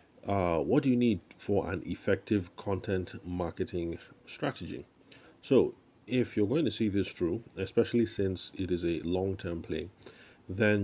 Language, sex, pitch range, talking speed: English, male, 85-100 Hz, 150 wpm